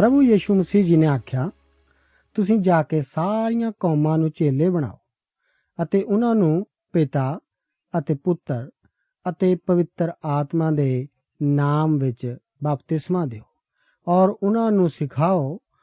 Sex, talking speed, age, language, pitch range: male, 125 wpm, 50-69, Punjabi, 140-185 Hz